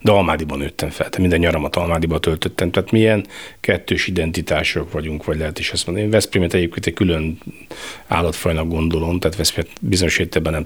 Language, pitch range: Hungarian, 75-85 Hz